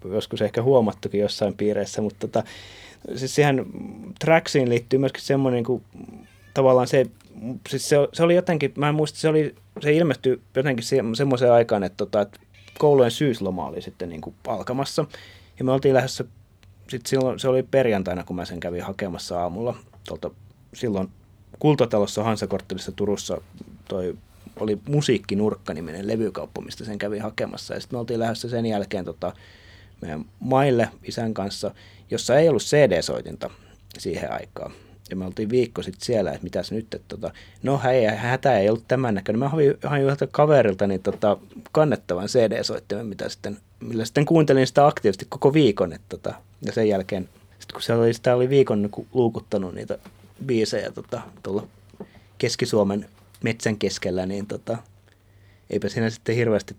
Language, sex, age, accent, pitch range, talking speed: Finnish, male, 30-49, native, 100-130 Hz, 150 wpm